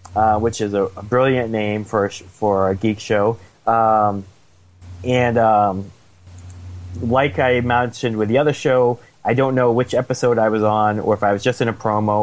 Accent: American